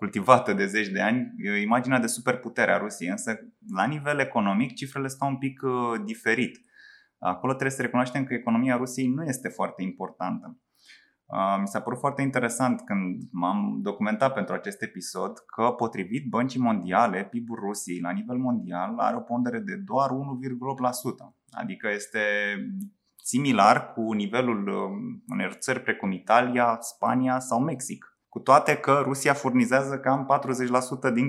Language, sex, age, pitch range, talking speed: Romanian, male, 20-39, 110-140 Hz, 145 wpm